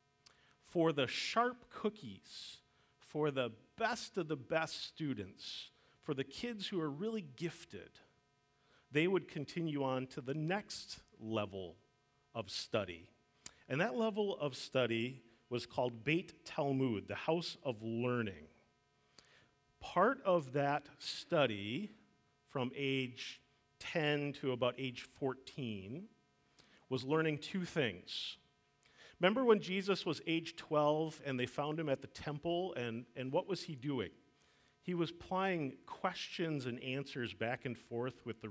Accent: American